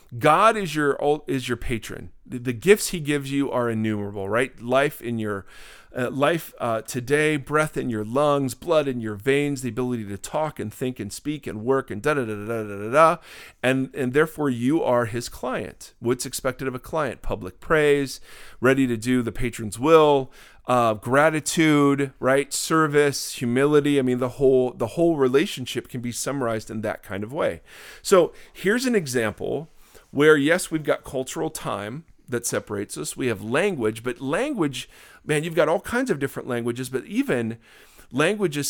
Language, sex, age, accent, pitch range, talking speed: English, male, 40-59, American, 120-145 Hz, 180 wpm